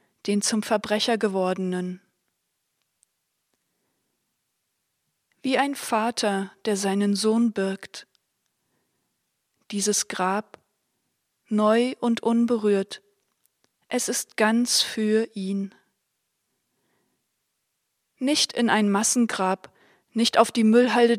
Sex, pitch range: female, 200-230 Hz